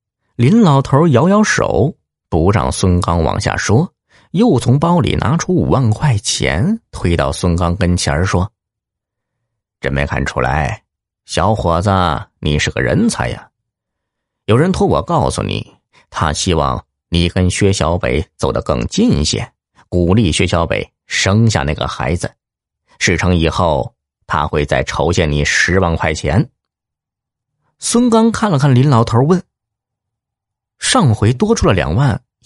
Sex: male